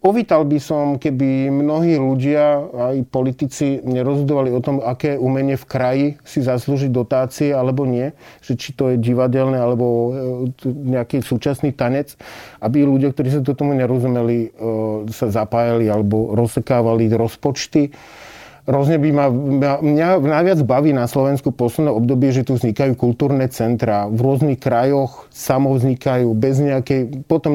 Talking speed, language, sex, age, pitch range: 135 wpm, Slovak, male, 40-59, 125-145 Hz